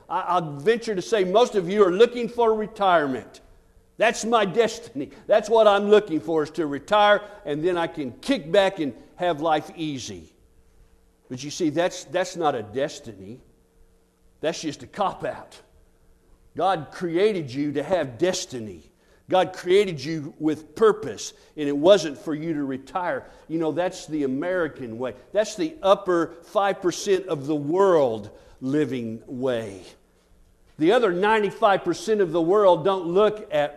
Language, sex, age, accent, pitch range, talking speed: English, male, 50-69, American, 135-200 Hz, 155 wpm